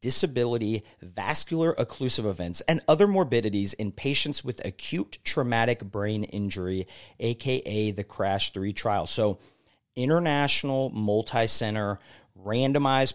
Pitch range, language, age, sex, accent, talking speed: 100-130 Hz, English, 40-59, male, American, 100 wpm